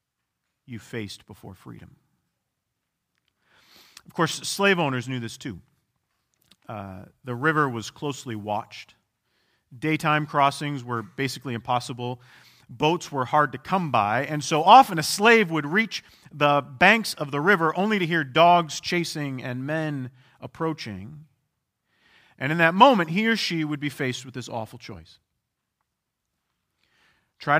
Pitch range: 120-150 Hz